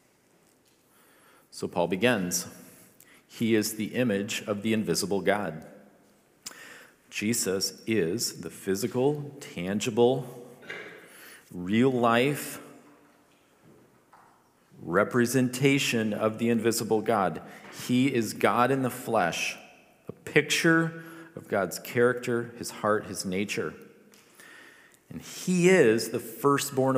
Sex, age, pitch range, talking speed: male, 40-59, 110-145 Hz, 95 wpm